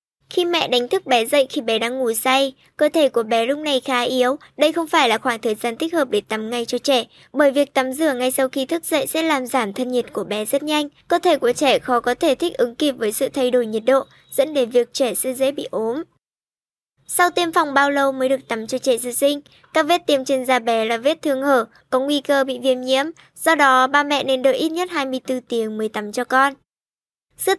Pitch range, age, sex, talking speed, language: 245-290 Hz, 10-29, male, 255 wpm, Vietnamese